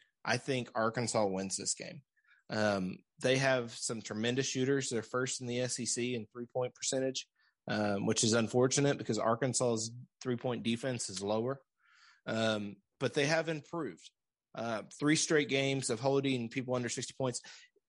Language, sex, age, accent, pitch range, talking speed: English, male, 30-49, American, 110-130 Hz, 150 wpm